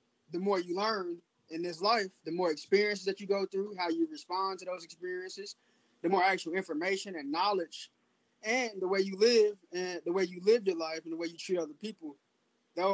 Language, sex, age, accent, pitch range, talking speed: English, male, 20-39, American, 170-205 Hz, 210 wpm